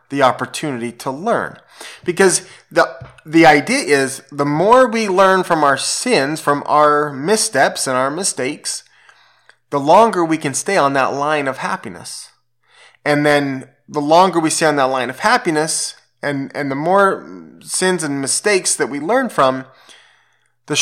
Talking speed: 160 wpm